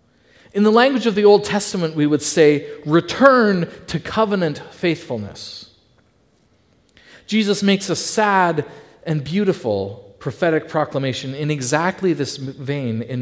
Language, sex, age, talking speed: English, male, 40-59, 125 wpm